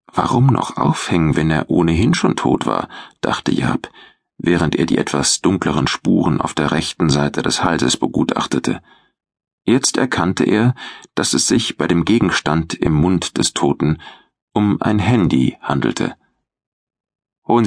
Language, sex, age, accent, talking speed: German, male, 40-59, German, 145 wpm